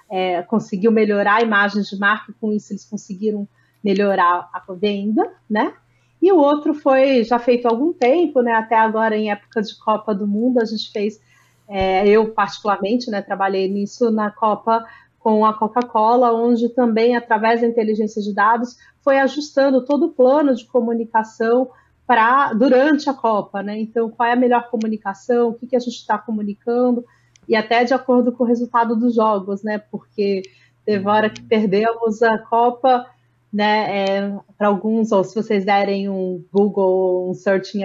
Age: 30-49